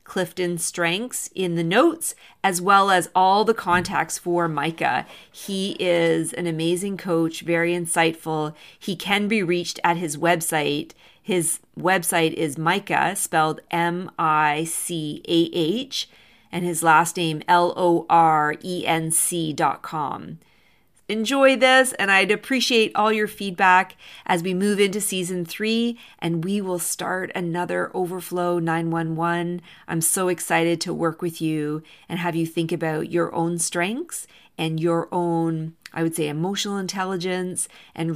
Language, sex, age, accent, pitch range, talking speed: English, female, 40-59, American, 165-195 Hz, 130 wpm